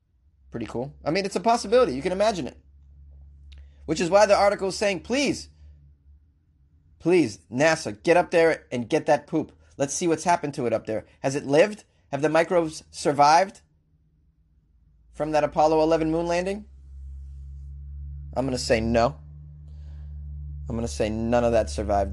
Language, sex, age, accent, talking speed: English, male, 30-49, American, 170 wpm